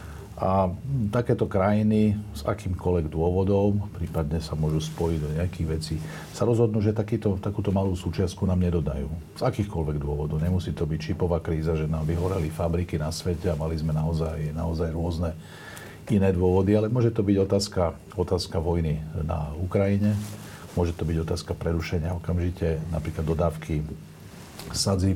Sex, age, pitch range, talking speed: male, 50-69, 80-100 Hz, 150 wpm